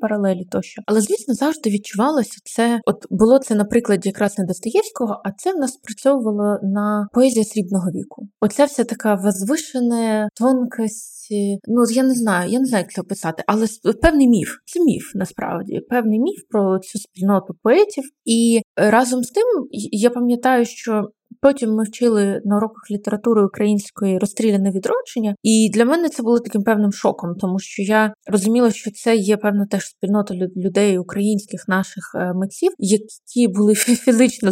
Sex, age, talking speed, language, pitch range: female, 20-39, 160 wpm, Ukrainian, 190-235 Hz